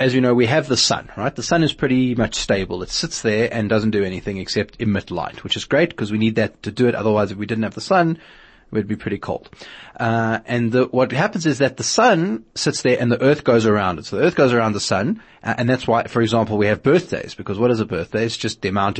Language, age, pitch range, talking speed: English, 30-49, 110-130 Hz, 275 wpm